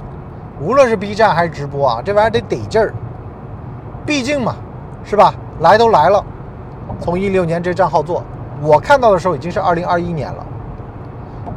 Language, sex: Chinese, male